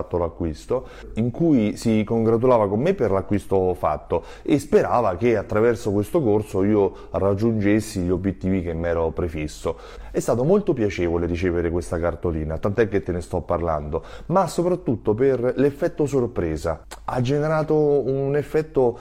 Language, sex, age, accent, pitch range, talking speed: Italian, male, 30-49, native, 90-140 Hz, 145 wpm